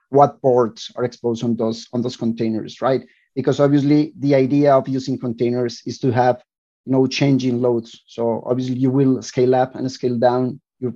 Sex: male